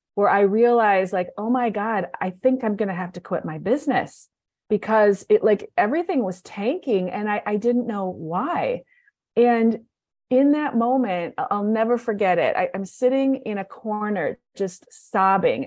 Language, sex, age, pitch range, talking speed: English, female, 30-49, 185-240 Hz, 170 wpm